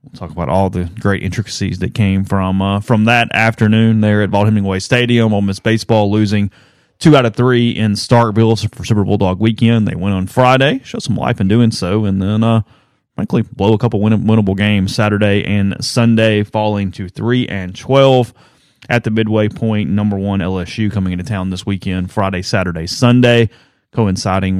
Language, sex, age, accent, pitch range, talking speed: English, male, 30-49, American, 95-115 Hz, 190 wpm